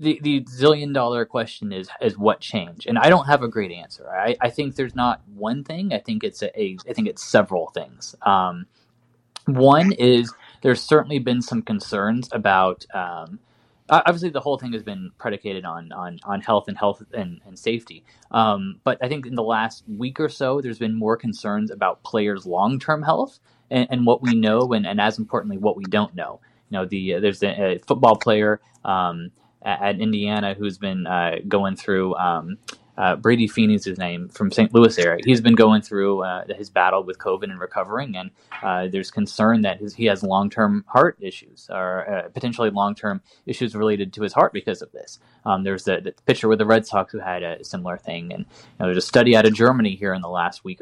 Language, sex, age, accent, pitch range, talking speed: English, male, 20-39, American, 100-135 Hz, 210 wpm